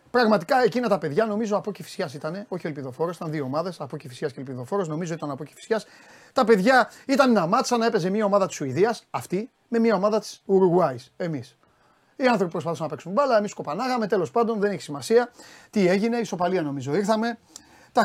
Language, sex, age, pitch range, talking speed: Greek, male, 30-49, 150-210 Hz, 200 wpm